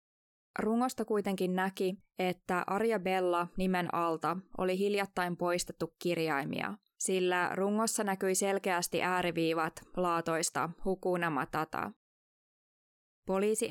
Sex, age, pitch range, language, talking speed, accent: female, 20-39, 175-200 Hz, Finnish, 85 wpm, native